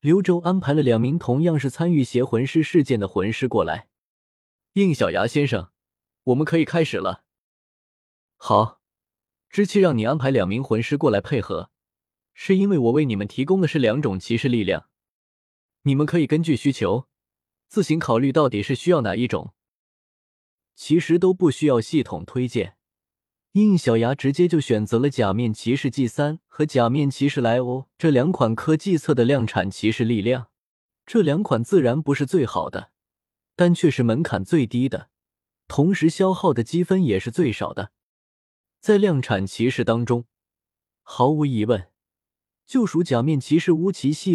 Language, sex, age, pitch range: Chinese, male, 20-39, 115-160 Hz